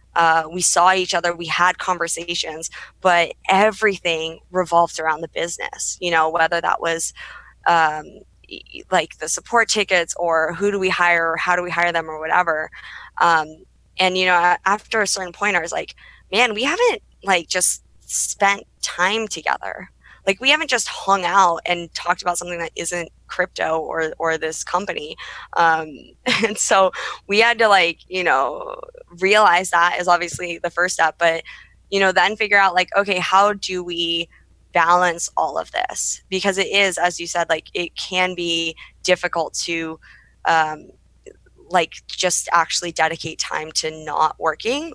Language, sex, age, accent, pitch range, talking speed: English, female, 20-39, American, 165-190 Hz, 165 wpm